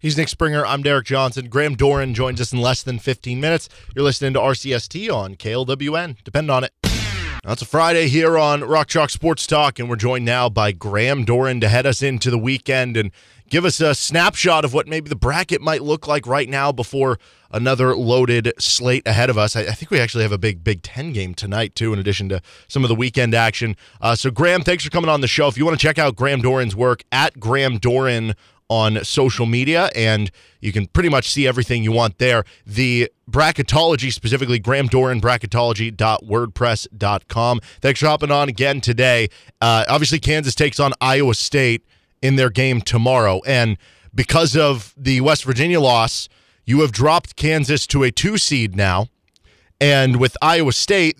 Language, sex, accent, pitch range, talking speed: English, male, American, 115-150 Hz, 190 wpm